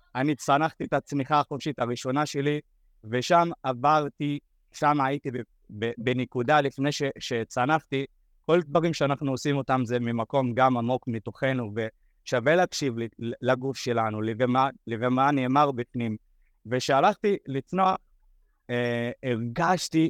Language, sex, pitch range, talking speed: Hebrew, male, 125-150 Hz, 105 wpm